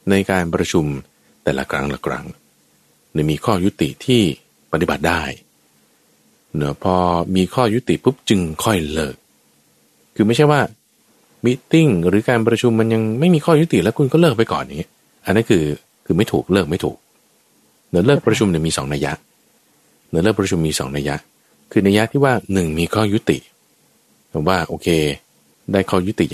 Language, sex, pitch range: Thai, male, 80-130 Hz